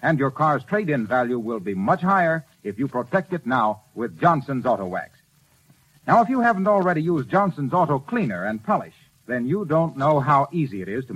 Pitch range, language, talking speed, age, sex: 140-190 Hz, English, 205 wpm, 60-79, male